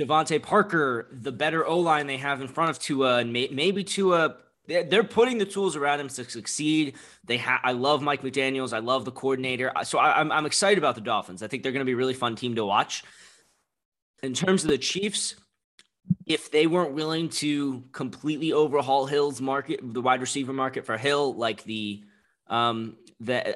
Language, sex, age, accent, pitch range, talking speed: English, male, 20-39, American, 120-150 Hz, 195 wpm